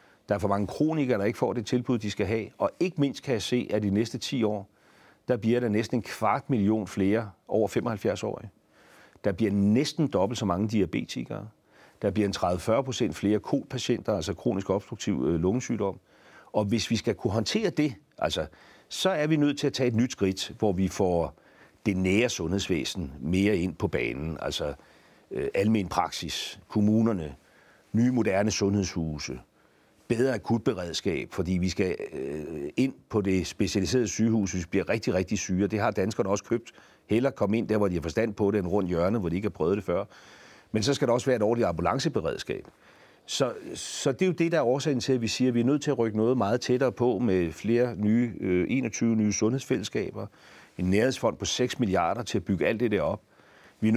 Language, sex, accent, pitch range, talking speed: Danish, male, native, 100-120 Hz, 205 wpm